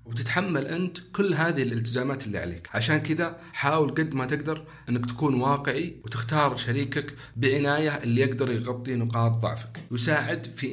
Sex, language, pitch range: male, Arabic, 115-150 Hz